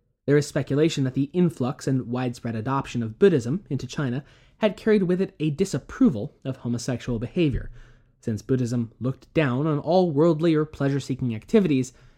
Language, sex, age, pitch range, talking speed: English, male, 20-39, 115-165 Hz, 160 wpm